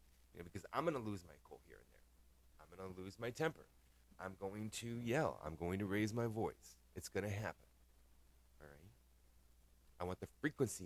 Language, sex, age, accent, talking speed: English, male, 30-49, American, 200 wpm